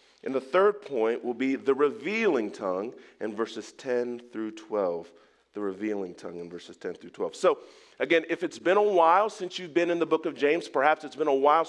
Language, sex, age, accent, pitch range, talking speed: English, male, 40-59, American, 150-250 Hz, 215 wpm